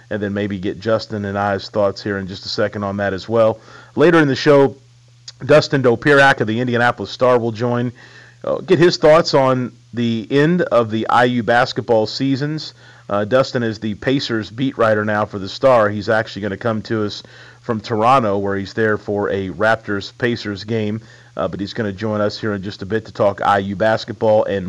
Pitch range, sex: 105-125 Hz, male